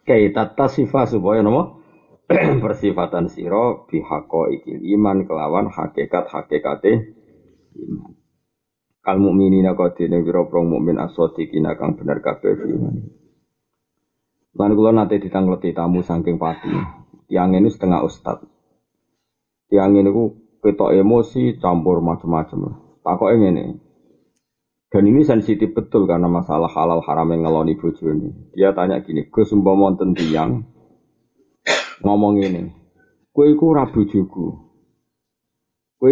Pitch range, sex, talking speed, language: 85-110 Hz, male, 120 wpm, Indonesian